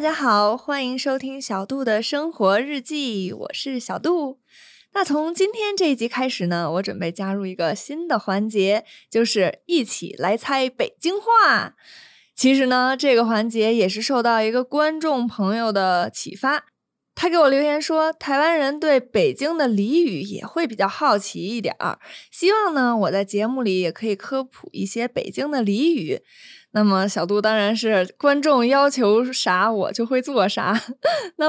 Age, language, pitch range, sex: 20-39, Chinese, 210-295 Hz, female